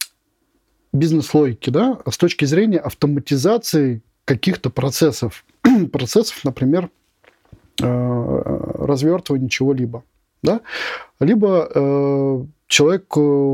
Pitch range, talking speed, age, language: 130-165 Hz, 80 wpm, 20-39, Russian